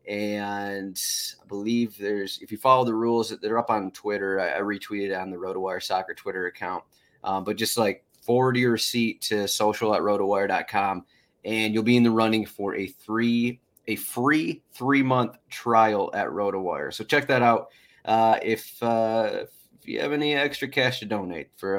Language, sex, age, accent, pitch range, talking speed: English, male, 30-49, American, 100-125 Hz, 175 wpm